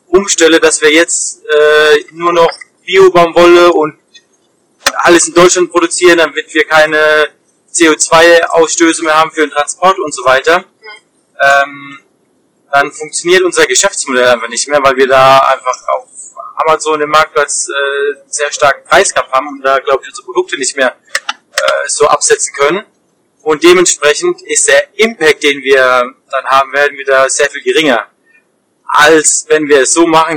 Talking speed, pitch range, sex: 160 wpm, 135-175 Hz, male